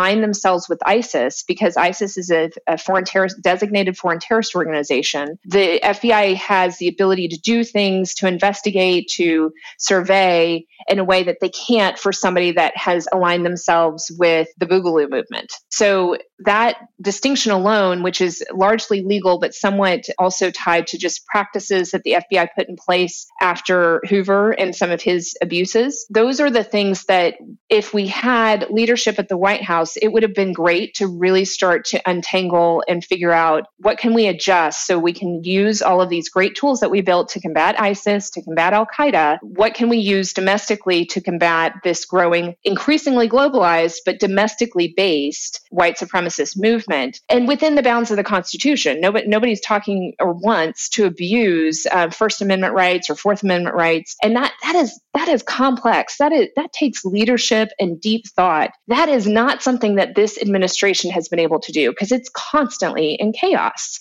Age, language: 30-49, English